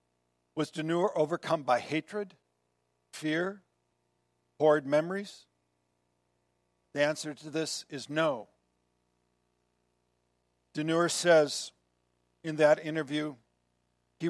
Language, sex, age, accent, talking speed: English, male, 50-69, American, 85 wpm